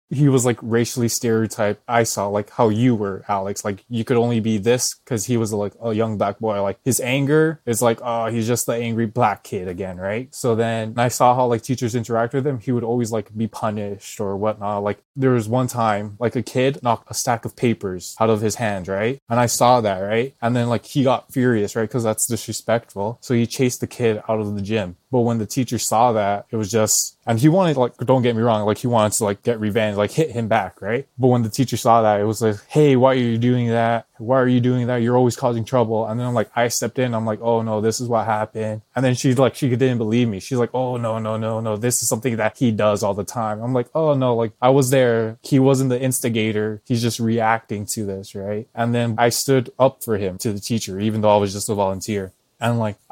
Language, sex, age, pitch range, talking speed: English, male, 20-39, 110-125 Hz, 260 wpm